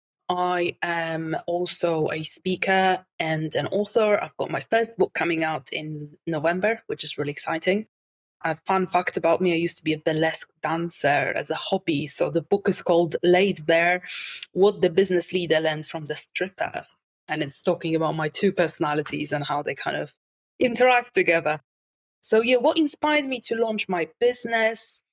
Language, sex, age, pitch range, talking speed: English, female, 20-39, 160-190 Hz, 175 wpm